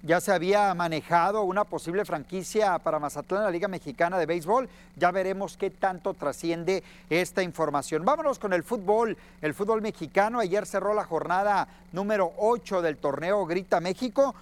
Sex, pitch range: male, 175-225 Hz